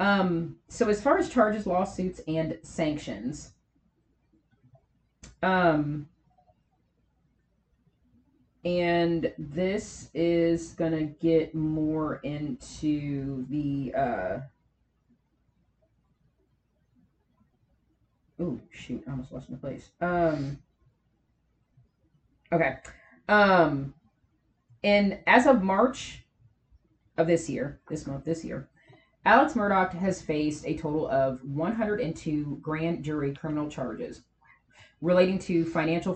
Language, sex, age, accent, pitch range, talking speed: English, female, 30-49, American, 145-185 Hz, 95 wpm